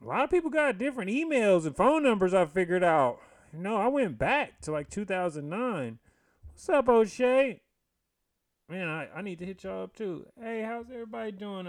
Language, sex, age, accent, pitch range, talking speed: English, male, 30-49, American, 130-175 Hz, 190 wpm